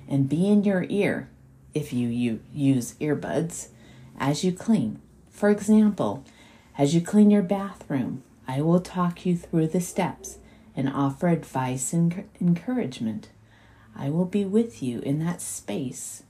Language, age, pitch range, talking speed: English, 40-59, 120-185 Hz, 145 wpm